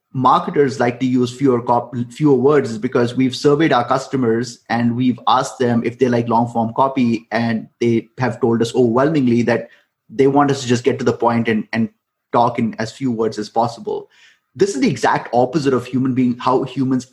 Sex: male